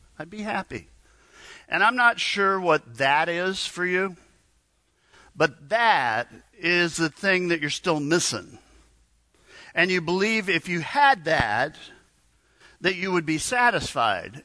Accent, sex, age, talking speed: American, male, 50-69, 135 wpm